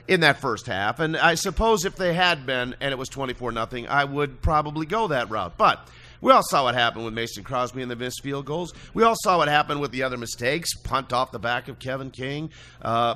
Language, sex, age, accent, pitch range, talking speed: English, male, 40-59, American, 130-185 Hz, 240 wpm